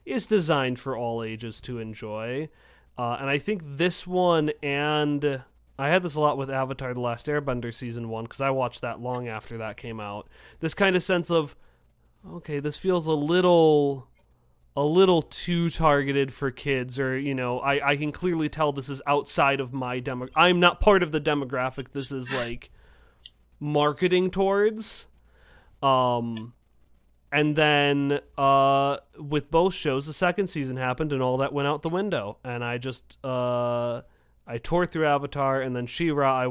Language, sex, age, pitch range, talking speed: English, male, 30-49, 120-150 Hz, 175 wpm